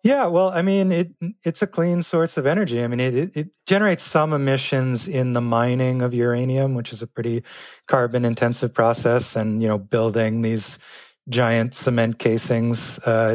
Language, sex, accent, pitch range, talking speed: English, male, American, 110-130 Hz, 170 wpm